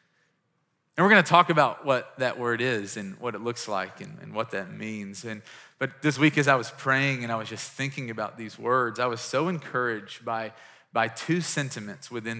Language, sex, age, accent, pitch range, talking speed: English, male, 30-49, American, 125-180 Hz, 215 wpm